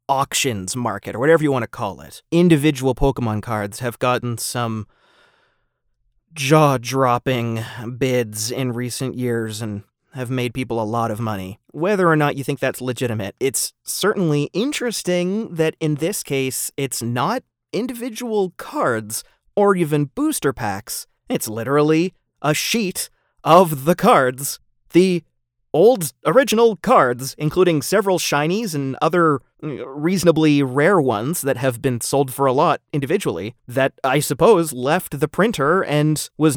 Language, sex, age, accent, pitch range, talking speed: English, male, 30-49, American, 120-170 Hz, 140 wpm